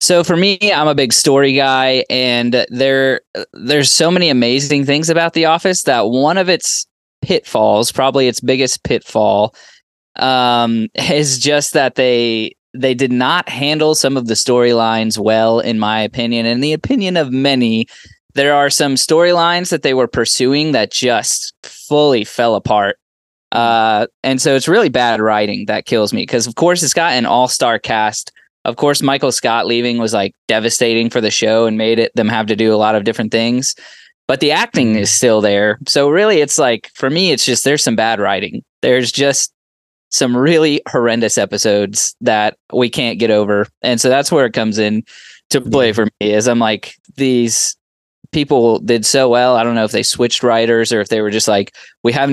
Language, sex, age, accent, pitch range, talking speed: English, male, 20-39, American, 110-140 Hz, 190 wpm